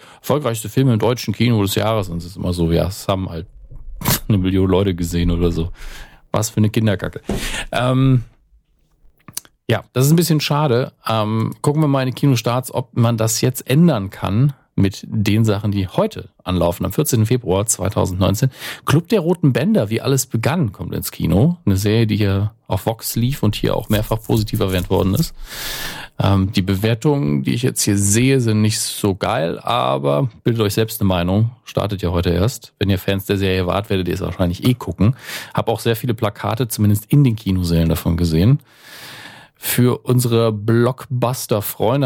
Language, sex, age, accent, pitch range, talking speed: German, male, 40-59, German, 95-120 Hz, 185 wpm